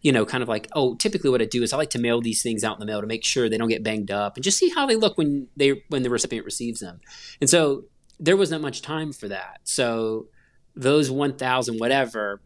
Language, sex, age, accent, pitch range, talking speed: English, male, 30-49, American, 105-130 Hz, 260 wpm